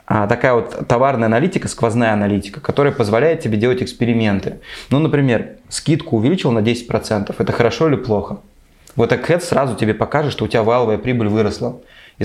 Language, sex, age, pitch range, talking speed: Russian, male, 20-39, 110-135 Hz, 165 wpm